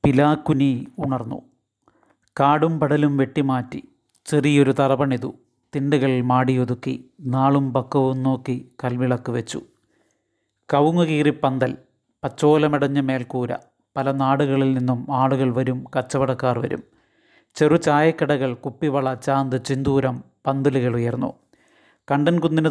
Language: Malayalam